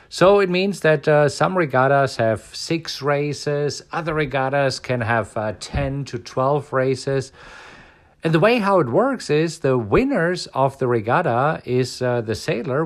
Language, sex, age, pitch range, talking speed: English, male, 50-69, 120-165 Hz, 165 wpm